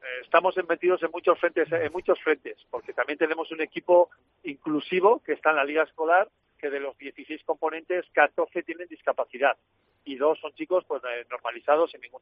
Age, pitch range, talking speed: 50-69, 140-175 Hz, 175 wpm